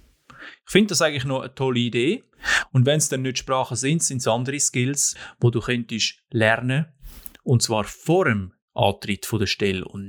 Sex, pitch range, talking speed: male, 110-140 Hz, 185 wpm